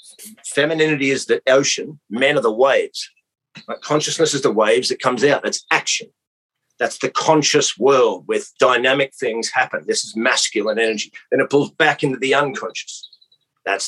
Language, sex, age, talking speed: English, male, 50-69, 165 wpm